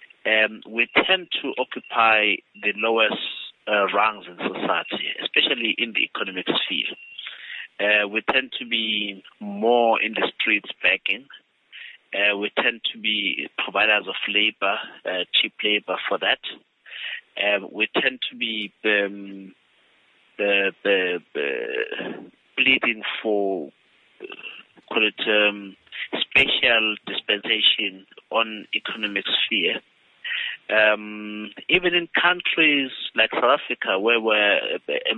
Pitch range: 100-115 Hz